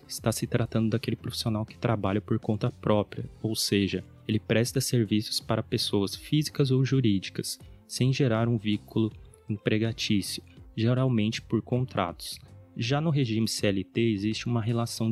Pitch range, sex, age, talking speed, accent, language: 100-120 Hz, male, 20-39, 140 wpm, Brazilian, Portuguese